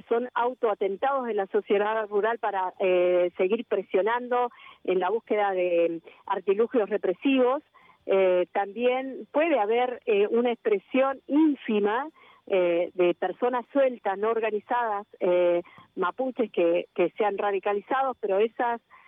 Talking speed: 120 wpm